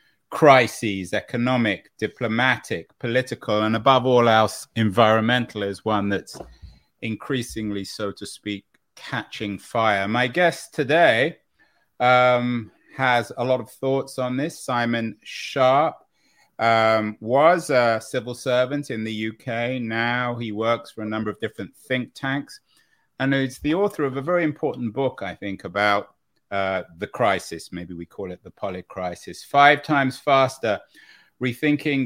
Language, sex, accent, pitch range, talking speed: English, male, British, 105-130 Hz, 140 wpm